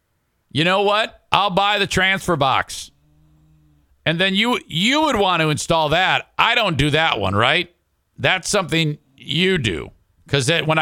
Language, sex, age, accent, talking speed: English, male, 50-69, American, 160 wpm